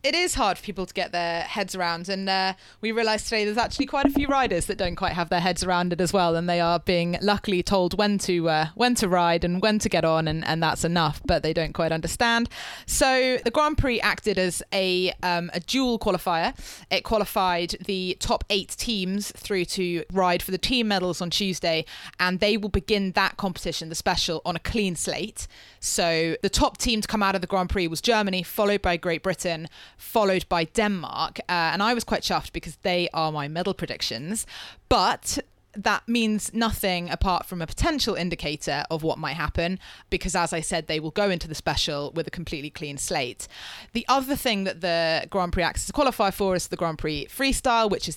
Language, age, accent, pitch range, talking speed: English, 20-39, British, 170-210 Hz, 215 wpm